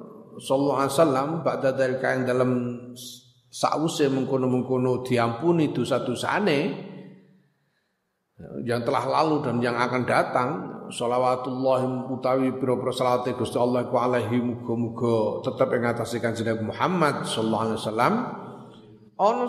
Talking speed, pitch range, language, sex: 105 wpm, 120-160 Hz, Indonesian, male